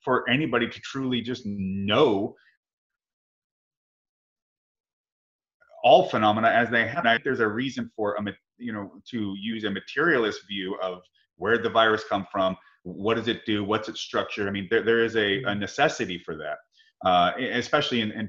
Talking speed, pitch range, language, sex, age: 165 wpm, 95-120 Hz, English, male, 30-49